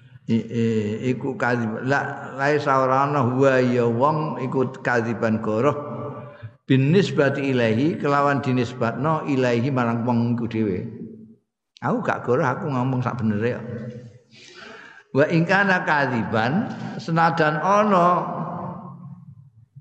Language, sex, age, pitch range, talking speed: Indonesian, male, 50-69, 120-150 Hz, 120 wpm